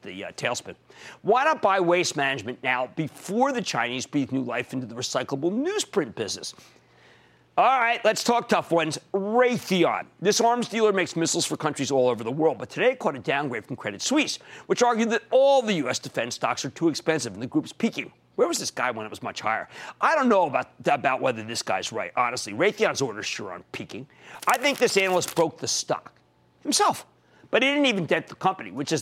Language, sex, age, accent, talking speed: English, male, 50-69, American, 210 wpm